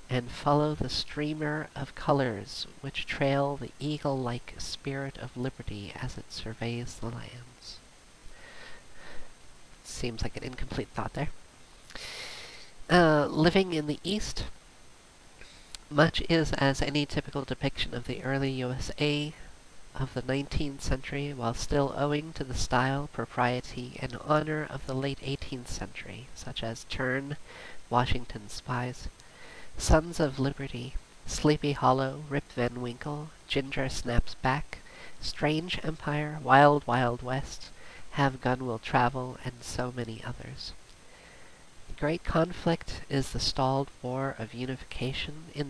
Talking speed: 125 wpm